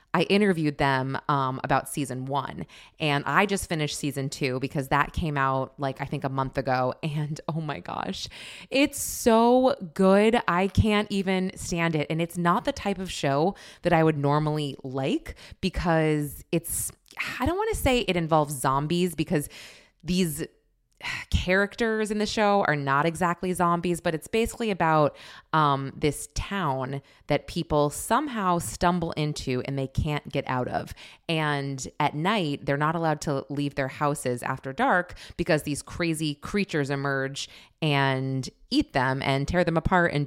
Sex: female